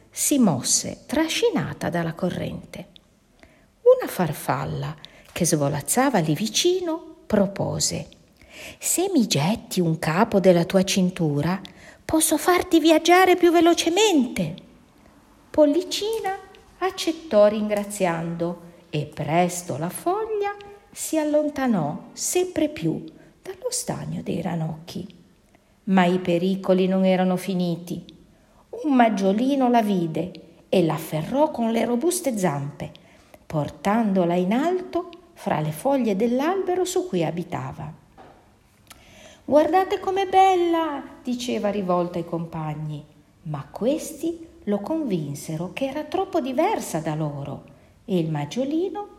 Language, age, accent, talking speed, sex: Italian, 50-69, native, 105 wpm, female